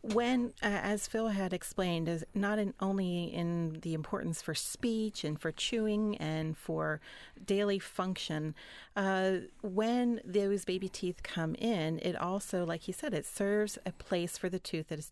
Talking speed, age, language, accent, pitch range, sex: 165 wpm, 40-59, English, American, 165-210 Hz, female